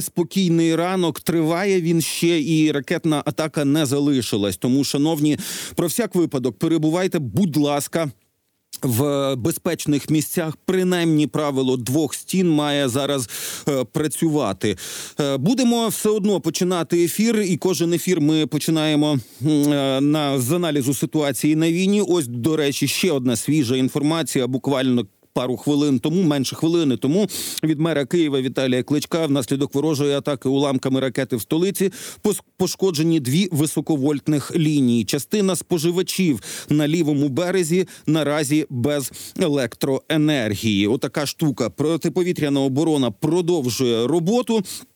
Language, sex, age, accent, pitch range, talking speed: Ukrainian, male, 40-59, native, 140-170 Hz, 120 wpm